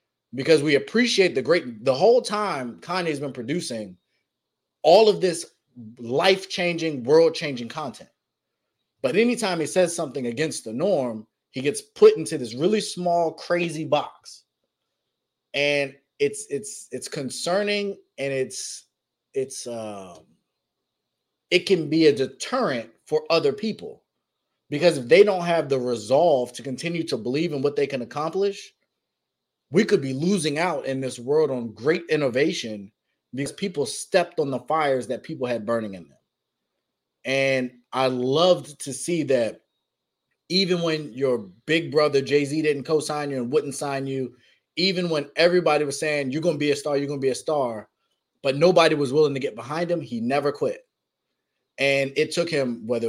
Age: 30-49